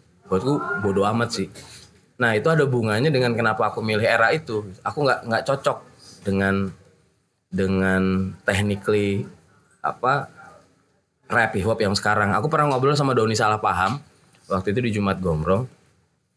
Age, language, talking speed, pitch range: 20-39, Indonesian, 145 wpm, 95-120 Hz